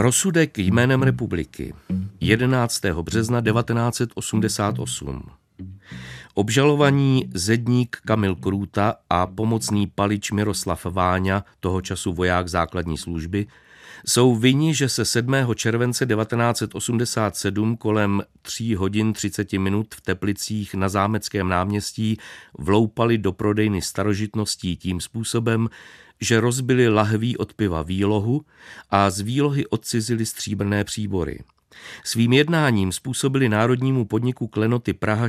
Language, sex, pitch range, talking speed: Czech, male, 95-115 Hz, 105 wpm